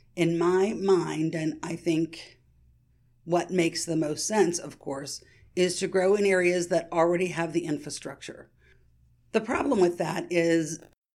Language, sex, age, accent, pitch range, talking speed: English, female, 50-69, American, 150-190 Hz, 150 wpm